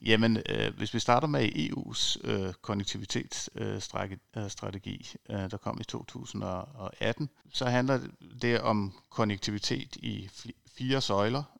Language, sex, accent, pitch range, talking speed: Danish, male, native, 100-125 Hz, 125 wpm